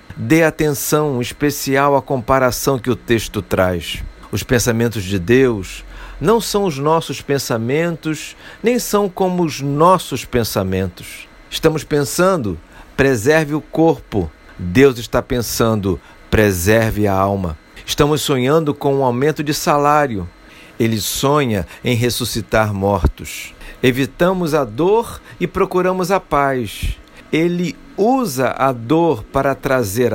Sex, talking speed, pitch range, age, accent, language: male, 120 wpm, 110-155 Hz, 50-69, Brazilian, Portuguese